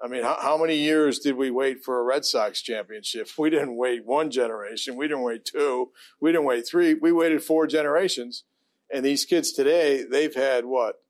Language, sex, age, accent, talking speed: English, male, 40-59, American, 200 wpm